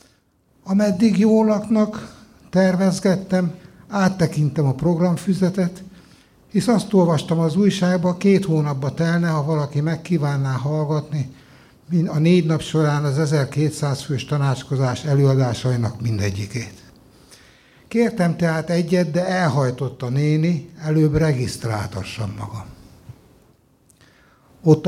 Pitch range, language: 125-170 Hz, Hungarian